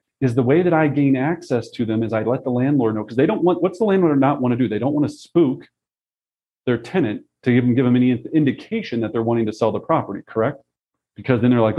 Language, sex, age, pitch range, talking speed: English, male, 40-59, 115-150 Hz, 250 wpm